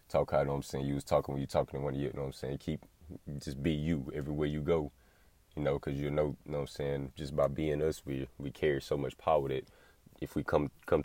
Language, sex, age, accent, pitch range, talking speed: English, male, 20-39, American, 70-75 Hz, 275 wpm